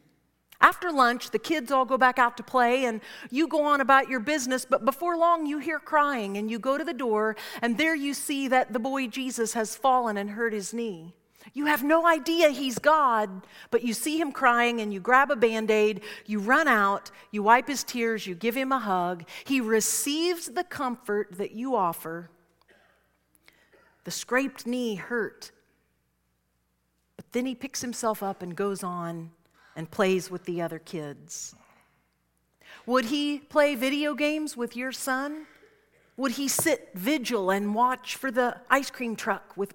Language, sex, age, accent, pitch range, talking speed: English, female, 50-69, American, 200-275 Hz, 175 wpm